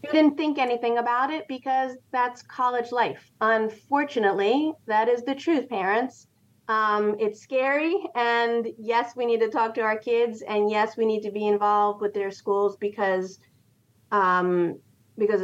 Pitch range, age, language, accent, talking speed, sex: 180-220 Hz, 30-49, English, American, 160 wpm, female